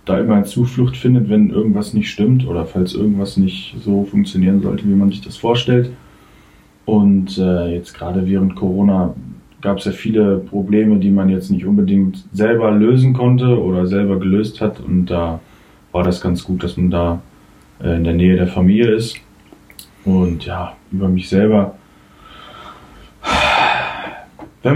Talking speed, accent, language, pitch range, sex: 160 wpm, German, German, 95-115 Hz, male